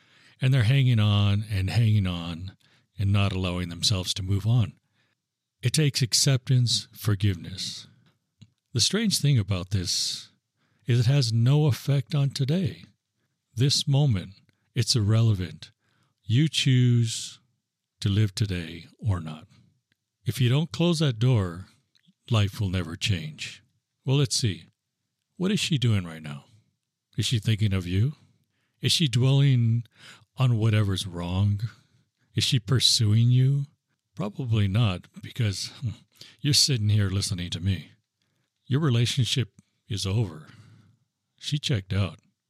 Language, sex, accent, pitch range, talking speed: English, male, American, 105-130 Hz, 130 wpm